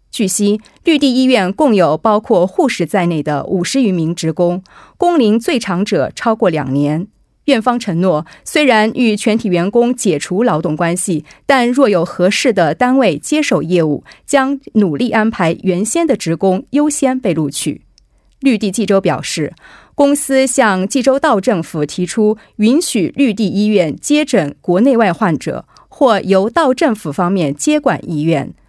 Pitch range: 175-265 Hz